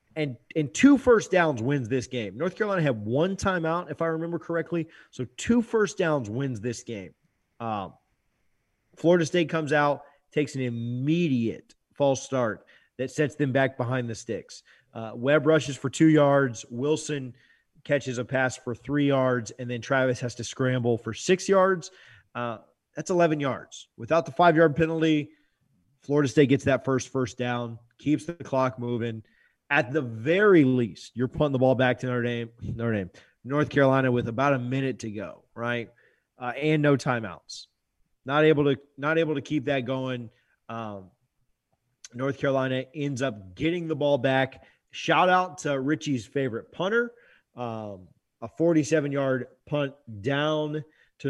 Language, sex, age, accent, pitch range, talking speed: English, male, 30-49, American, 125-155 Hz, 165 wpm